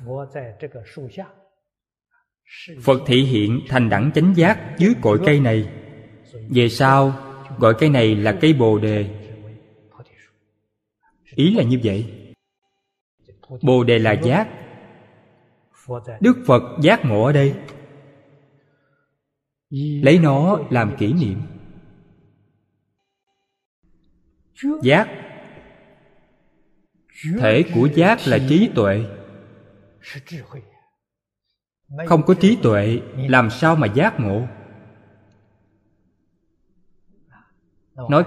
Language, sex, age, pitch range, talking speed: Vietnamese, male, 20-39, 105-155 Hz, 90 wpm